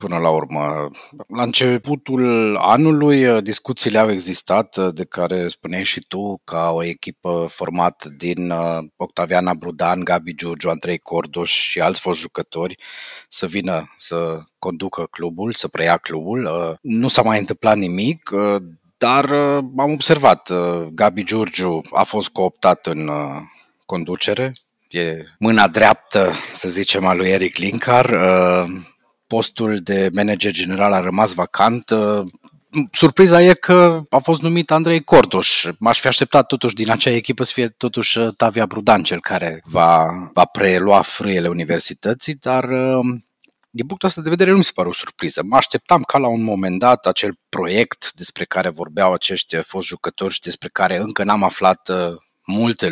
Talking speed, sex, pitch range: 145 wpm, male, 90-130 Hz